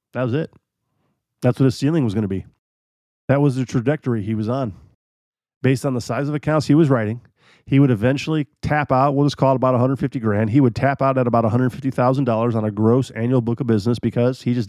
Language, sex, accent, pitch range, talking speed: English, male, American, 115-140 Hz, 230 wpm